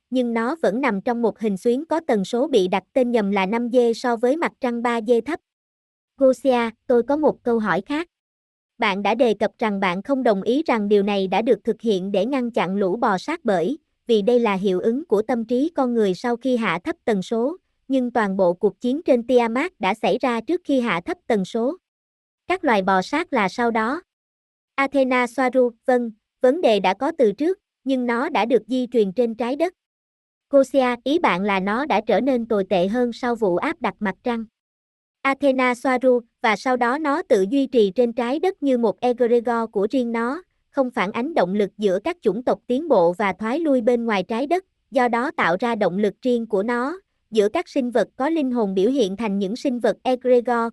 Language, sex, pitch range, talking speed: Vietnamese, male, 215-270 Hz, 220 wpm